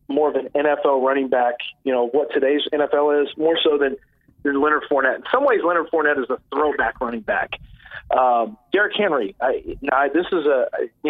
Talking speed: 200 wpm